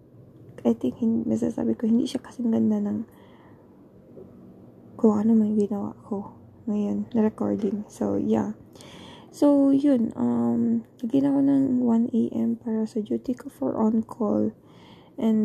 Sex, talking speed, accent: female, 130 wpm, native